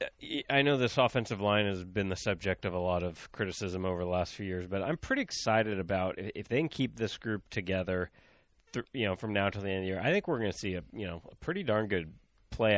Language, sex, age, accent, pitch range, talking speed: English, male, 30-49, American, 90-110 Hz, 265 wpm